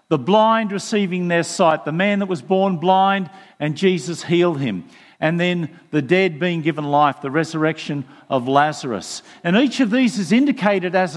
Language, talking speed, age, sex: English, 175 wpm, 50-69, male